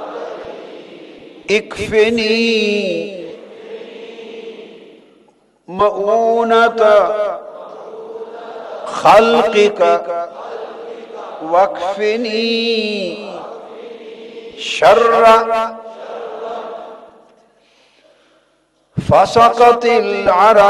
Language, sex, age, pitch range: Urdu, male, 50-69, 180-230 Hz